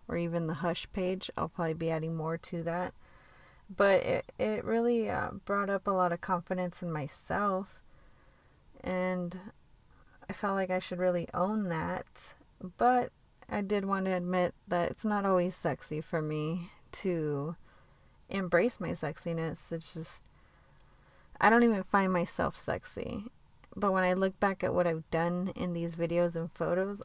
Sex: female